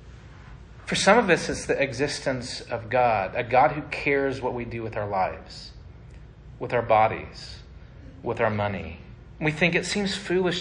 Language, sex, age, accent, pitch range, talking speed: English, male, 30-49, American, 125-165 Hz, 170 wpm